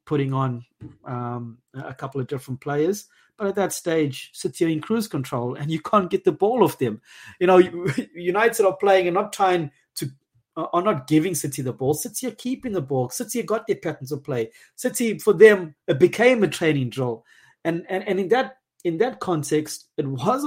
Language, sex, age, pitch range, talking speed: English, male, 30-49, 135-185 Hz, 200 wpm